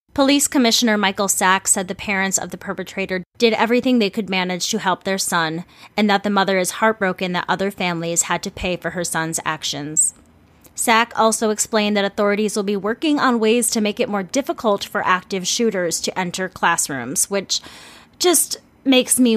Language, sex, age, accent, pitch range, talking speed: English, female, 20-39, American, 185-225 Hz, 185 wpm